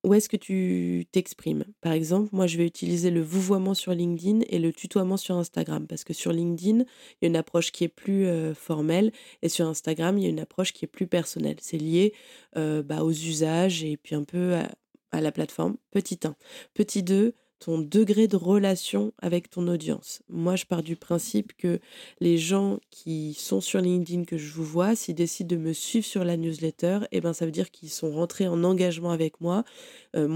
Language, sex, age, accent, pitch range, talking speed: French, female, 20-39, French, 160-185 Hz, 215 wpm